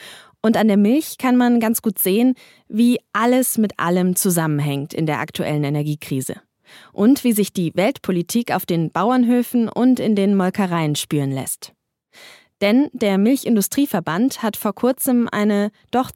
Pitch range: 175-230 Hz